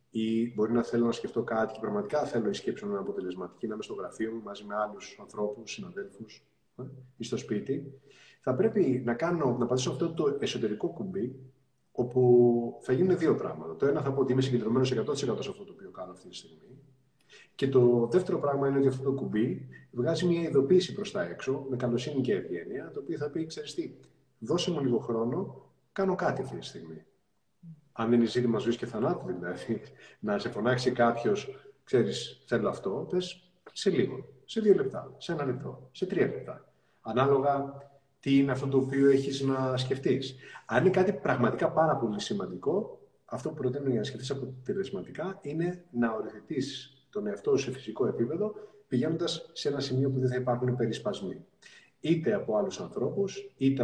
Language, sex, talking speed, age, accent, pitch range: Greek, male, 185 wpm, 30-49, native, 125-175 Hz